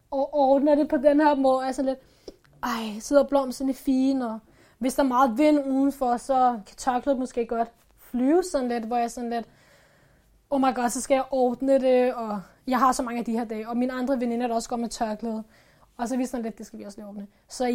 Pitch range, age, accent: 225-260 Hz, 20-39, native